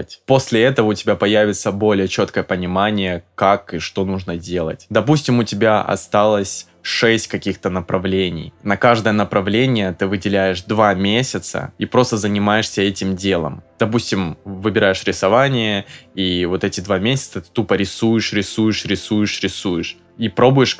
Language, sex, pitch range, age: Russian, male, 95-110 Hz, 20-39